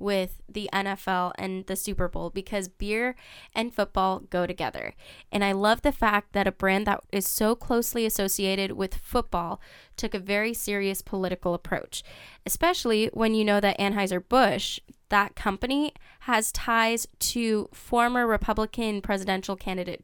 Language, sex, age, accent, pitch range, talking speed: English, female, 10-29, American, 195-220 Hz, 145 wpm